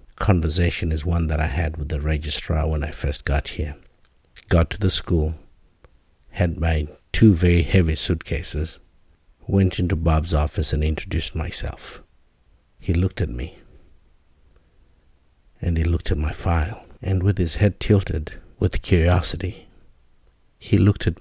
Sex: male